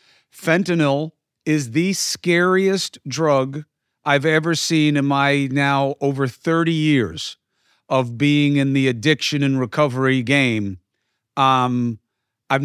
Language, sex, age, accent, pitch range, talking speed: English, male, 40-59, American, 130-165 Hz, 115 wpm